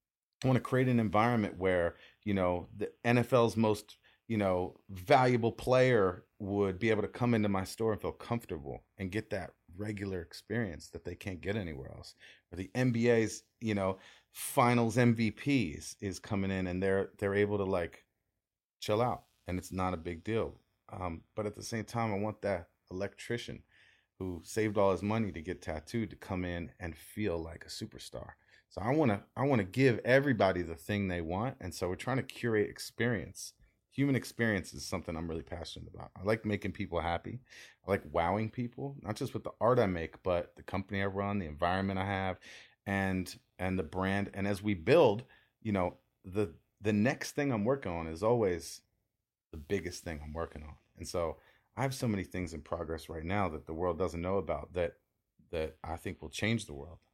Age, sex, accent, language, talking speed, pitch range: 30-49, male, American, English, 200 wpm, 90-110 Hz